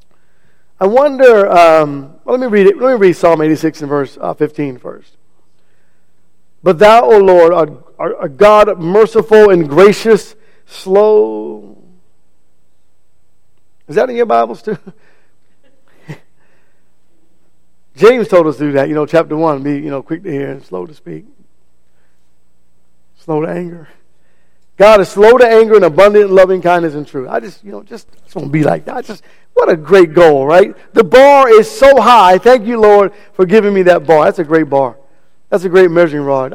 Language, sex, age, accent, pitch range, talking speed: English, male, 50-69, American, 150-205 Hz, 180 wpm